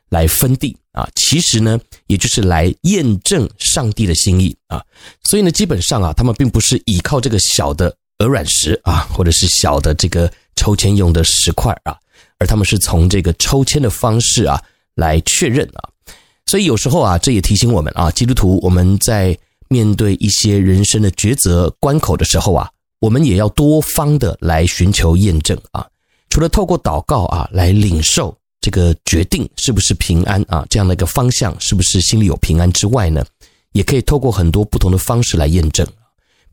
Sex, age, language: male, 30-49, Chinese